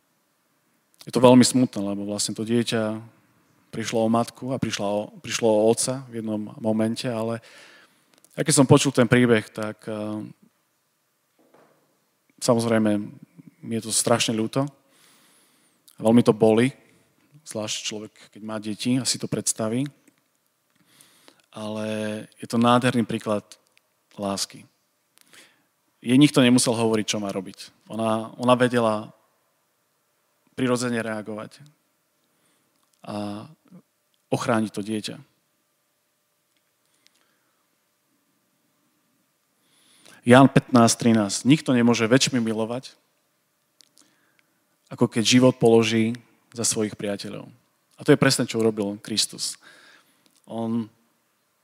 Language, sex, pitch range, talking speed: Slovak, male, 110-125 Hz, 105 wpm